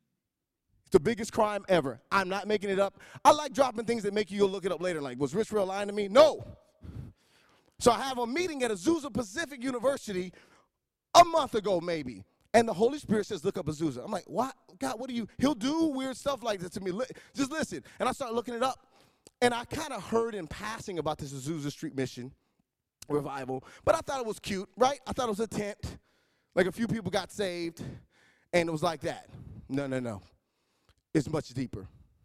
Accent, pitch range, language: American, 155-235 Hz, English